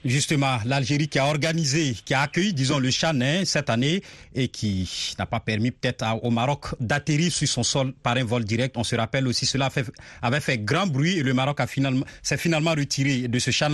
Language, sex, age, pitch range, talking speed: French, male, 40-59, 125-160 Hz, 215 wpm